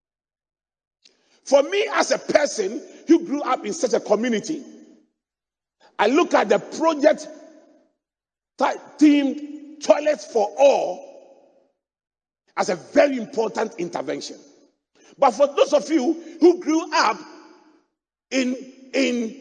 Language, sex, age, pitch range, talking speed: English, male, 50-69, 275-330 Hz, 110 wpm